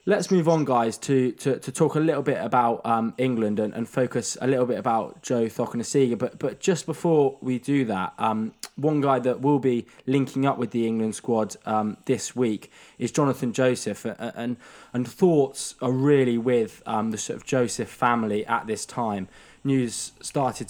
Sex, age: male, 20-39